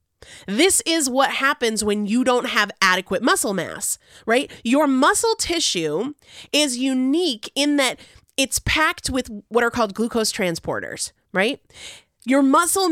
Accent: American